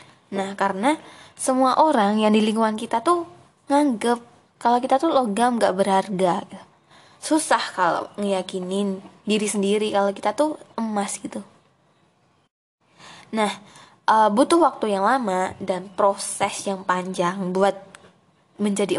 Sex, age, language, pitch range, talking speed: female, 20-39, Indonesian, 195-245 Hz, 115 wpm